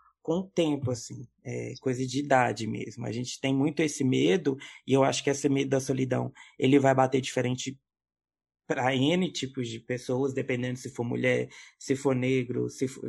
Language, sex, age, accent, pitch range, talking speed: Portuguese, male, 20-39, Brazilian, 130-150 Hz, 190 wpm